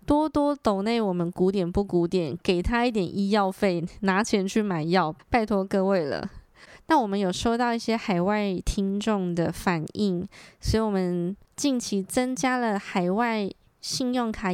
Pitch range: 185-240 Hz